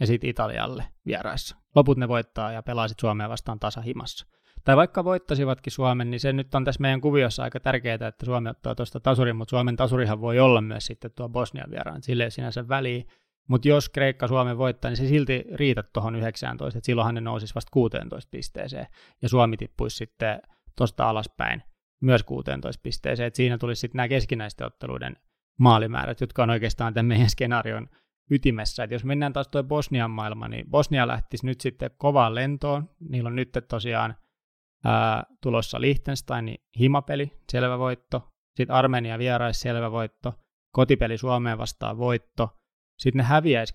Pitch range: 115-135 Hz